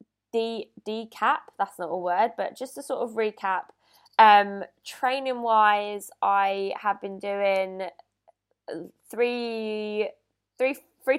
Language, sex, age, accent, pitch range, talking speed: English, female, 20-39, British, 185-220 Hz, 105 wpm